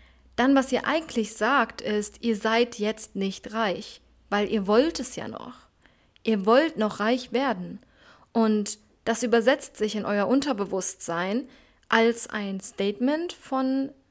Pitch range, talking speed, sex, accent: 205-250 Hz, 140 wpm, female, German